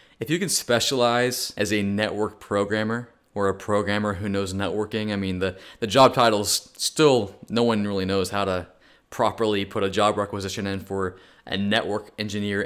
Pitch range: 105-145 Hz